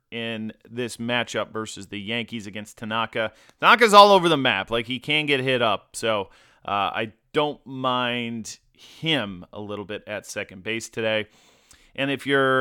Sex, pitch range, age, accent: male, 115-140 Hz, 30-49, American